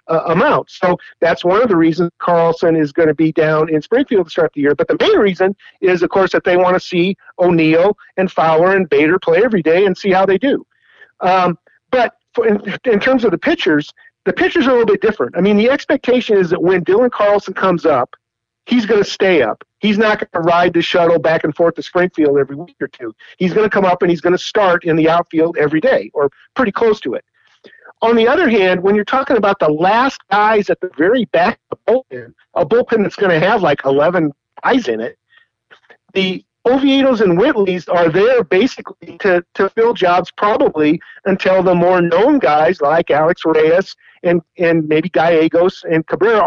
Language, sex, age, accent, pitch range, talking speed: English, male, 50-69, American, 170-220 Hz, 215 wpm